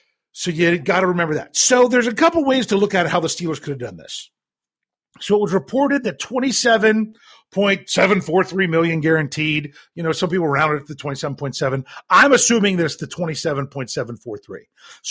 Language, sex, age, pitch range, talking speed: English, male, 40-59, 145-190 Hz, 170 wpm